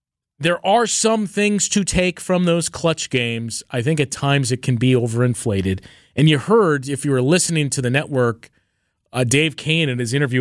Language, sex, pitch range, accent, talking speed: English, male, 115-150 Hz, American, 195 wpm